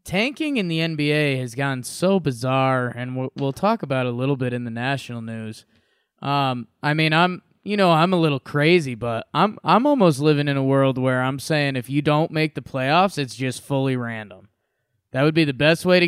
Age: 20-39